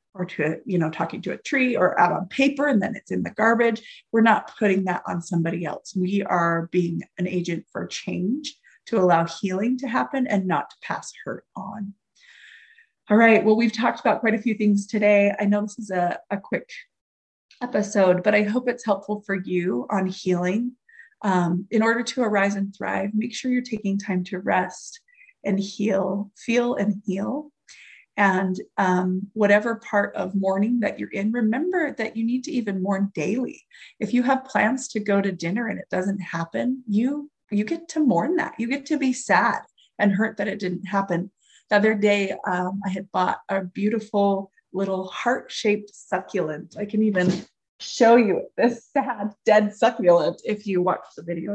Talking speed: 190 wpm